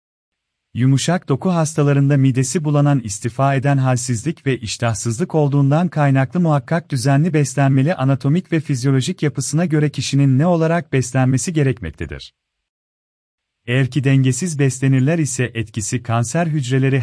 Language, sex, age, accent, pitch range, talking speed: Turkish, male, 40-59, native, 115-150 Hz, 115 wpm